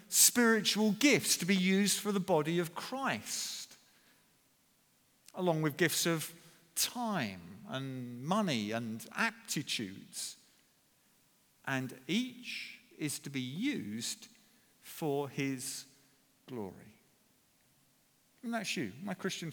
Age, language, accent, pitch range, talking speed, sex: 50-69, English, British, 155-220 Hz, 100 wpm, male